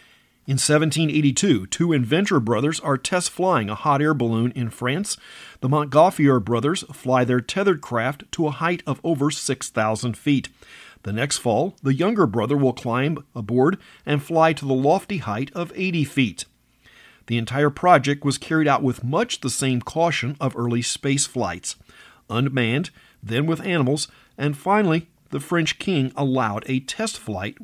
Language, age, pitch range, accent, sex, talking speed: English, 50-69, 125-155 Hz, American, male, 155 wpm